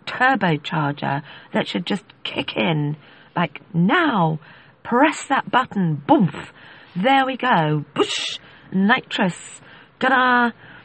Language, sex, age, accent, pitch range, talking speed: English, female, 40-59, British, 160-215 Hz, 105 wpm